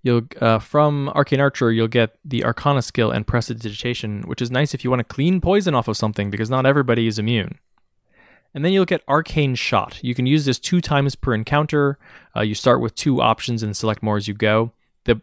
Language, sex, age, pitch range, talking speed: English, male, 20-39, 115-145 Hz, 220 wpm